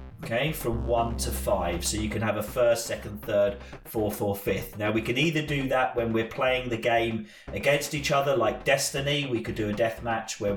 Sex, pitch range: male, 100-125 Hz